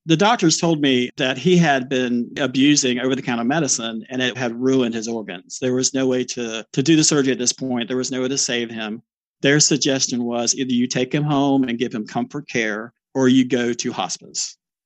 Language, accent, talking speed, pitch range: English, American, 220 wpm, 120-145 Hz